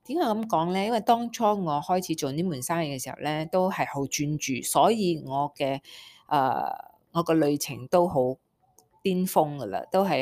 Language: Chinese